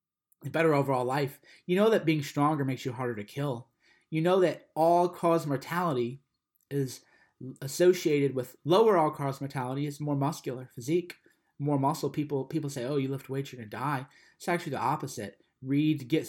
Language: English